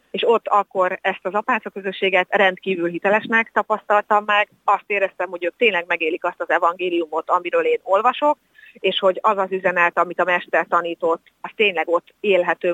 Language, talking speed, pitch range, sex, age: Hungarian, 170 wpm, 170-200 Hz, female, 30-49